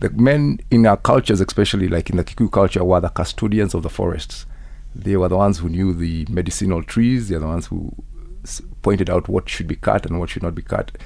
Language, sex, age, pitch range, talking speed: English, male, 50-69, 85-105 Hz, 240 wpm